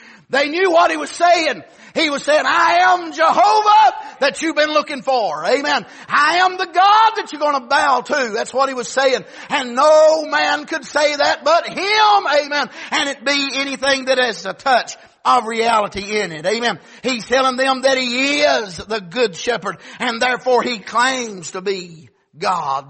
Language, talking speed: English, 185 wpm